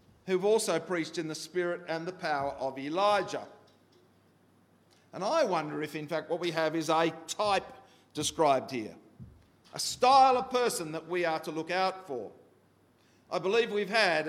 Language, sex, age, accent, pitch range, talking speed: English, male, 50-69, Australian, 150-200 Hz, 170 wpm